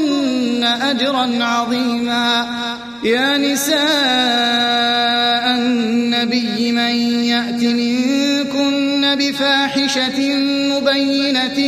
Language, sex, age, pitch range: Arabic, male, 30-49, 240-280 Hz